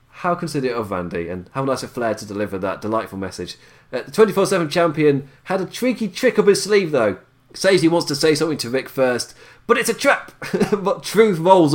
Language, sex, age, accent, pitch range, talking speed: English, male, 30-49, British, 115-160 Hz, 215 wpm